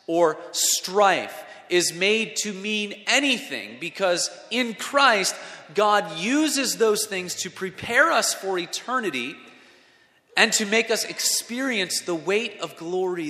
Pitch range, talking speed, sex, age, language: 135-195 Hz, 125 wpm, male, 30-49, English